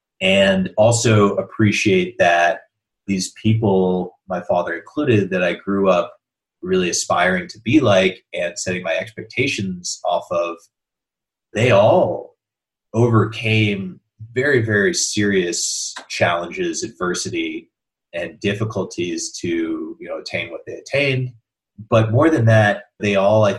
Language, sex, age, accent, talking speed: English, male, 30-49, American, 115 wpm